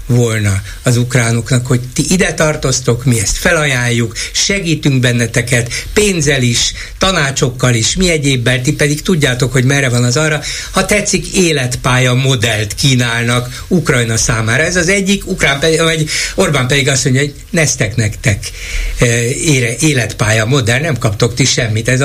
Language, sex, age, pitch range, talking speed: Hungarian, male, 60-79, 120-160 Hz, 145 wpm